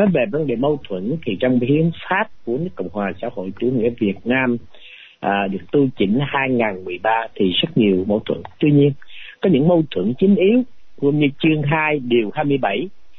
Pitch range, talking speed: 120-180 Hz, 200 wpm